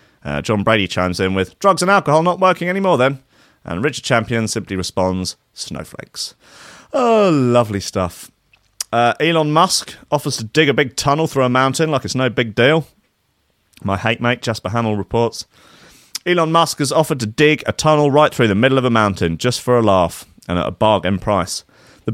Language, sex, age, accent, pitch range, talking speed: English, male, 30-49, British, 110-180 Hz, 190 wpm